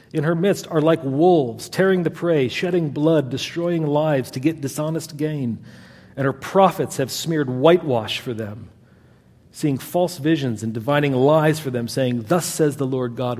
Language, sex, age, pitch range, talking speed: English, male, 40-59, 115-155 Hz, 175 wpm